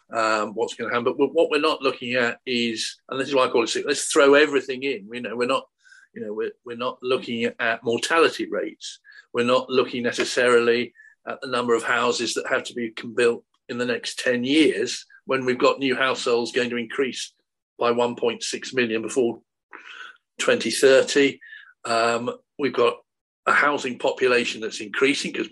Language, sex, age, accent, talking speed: English, male, 50-69, British, 180 wpm